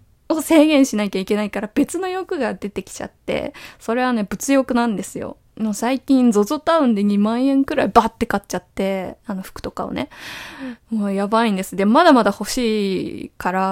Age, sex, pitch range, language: 20-39, female, 200-275 Hz, Japanese